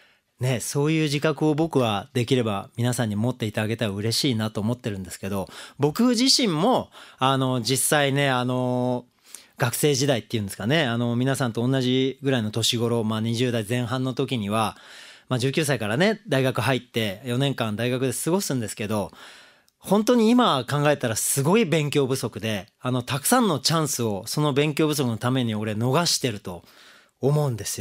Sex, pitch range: male, 120-150 Hz